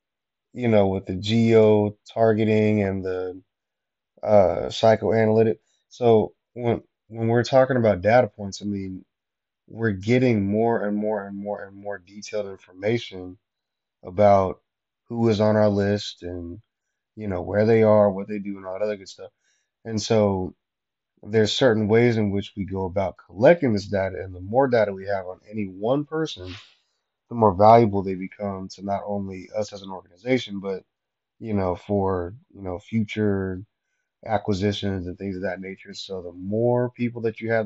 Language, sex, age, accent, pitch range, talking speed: English, male, 20-39, American, 95-110 Hz, 170 wpm